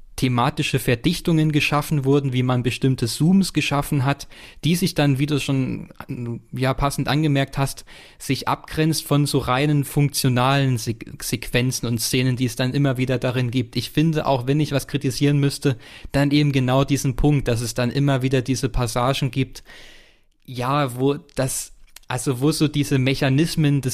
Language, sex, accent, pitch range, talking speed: German, male, German, 120-140 Hz, 160 wpm